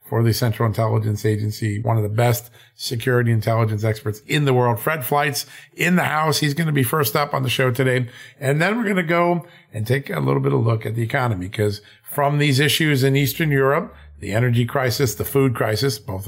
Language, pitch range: English, 110-140 Hz